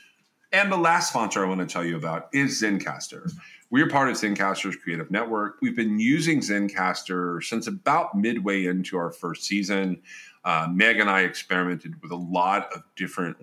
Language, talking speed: English, 180 wpm